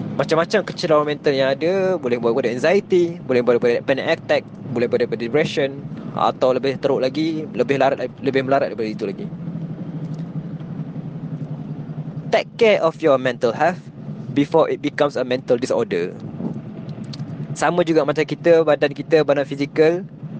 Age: 20-39